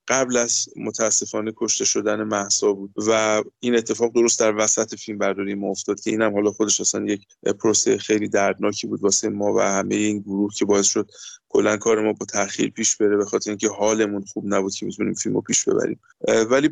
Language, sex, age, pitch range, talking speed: Persian, male, 20-39, 110-135 Hz, 195 wpm